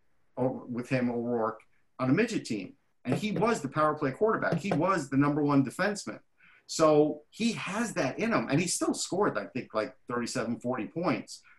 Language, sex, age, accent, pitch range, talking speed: English, male, 50-69, American, 130-165 Hz, 185 wpm